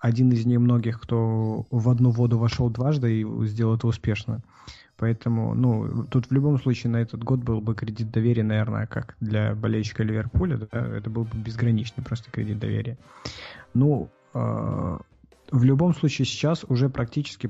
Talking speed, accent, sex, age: 160 wpm, native, male, 20-39